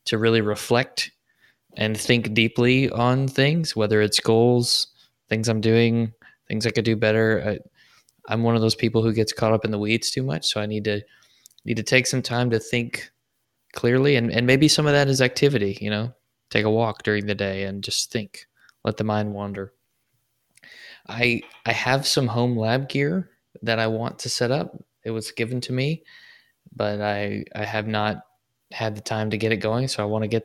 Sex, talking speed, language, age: male, 205 wpm, English, 20-39